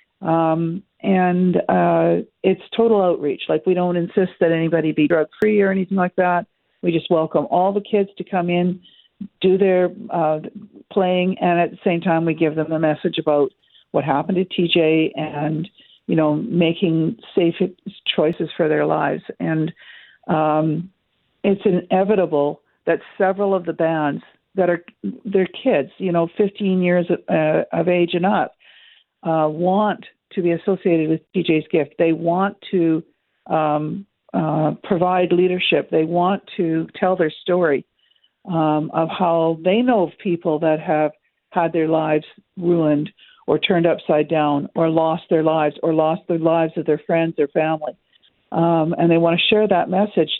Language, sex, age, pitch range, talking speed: English, female, 50-69, 160-195 Hz, 160 wpm